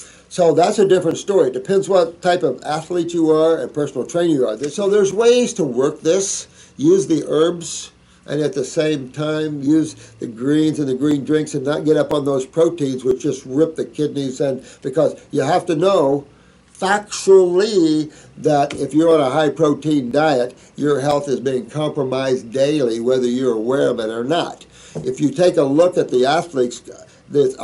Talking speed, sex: 190 wpm, male